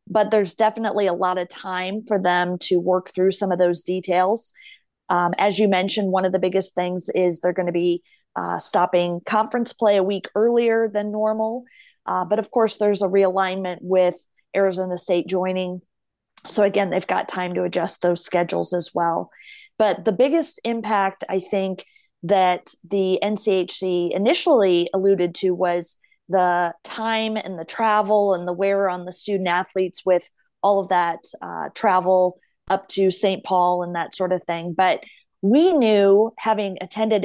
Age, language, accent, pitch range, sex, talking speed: 30-49, English, American, 180-215 Hz, female, 170 wpm